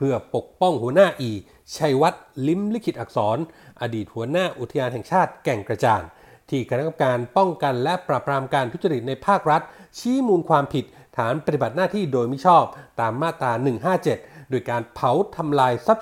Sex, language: male, Thai